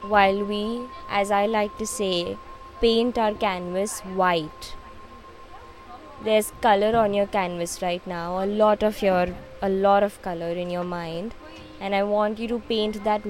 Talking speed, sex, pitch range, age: 165 wpm, female, 185-225 Hz, 20-39